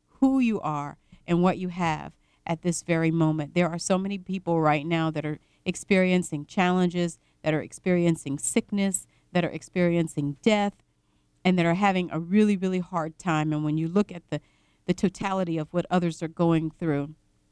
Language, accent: English, American